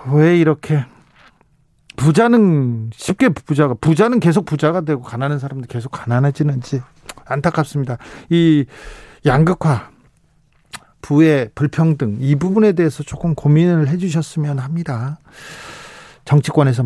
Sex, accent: male, native